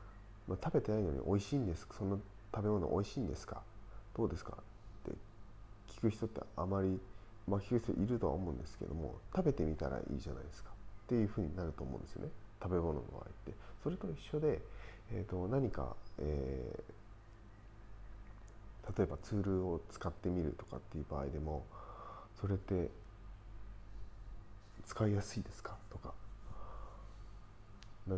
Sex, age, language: male, 30-49, Japanese